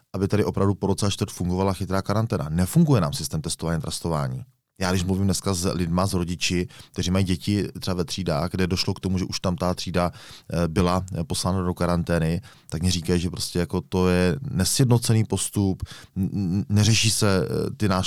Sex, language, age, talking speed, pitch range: male, Czech, 30-49, 185 wpm, 85-100 Hz